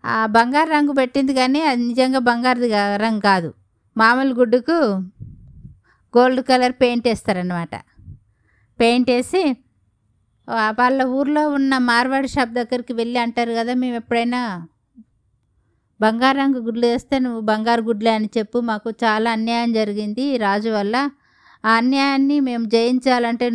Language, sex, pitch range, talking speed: Telugu, female, 195-250 Hz, 120 wpm